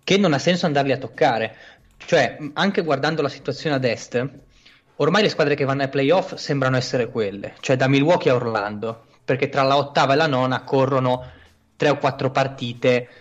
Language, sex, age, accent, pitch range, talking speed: Italian, male, 20-39, native, 130-155 Hz, 185 wpm